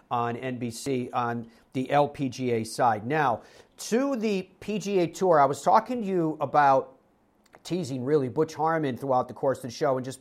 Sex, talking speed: male, 170 wpm